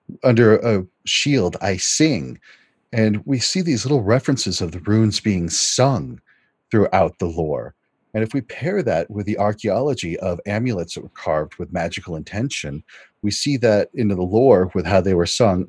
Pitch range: 95-120 Hz